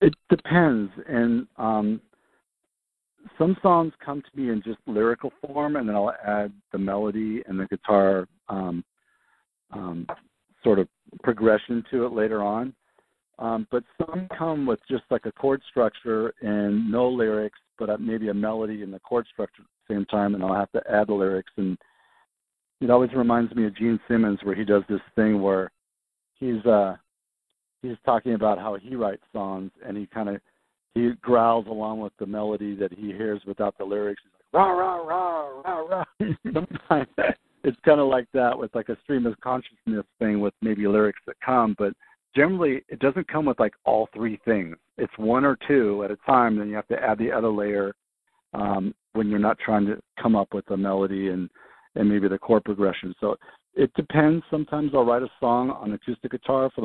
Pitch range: 100-125 Hz